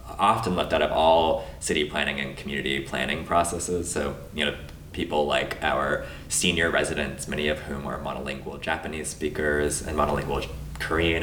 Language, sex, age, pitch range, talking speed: English, male, 20-39, 75-90 Hz, 155 wpm